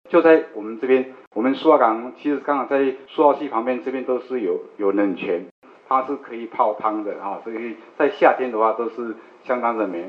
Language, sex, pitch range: Chinese, male, 110-140 Hz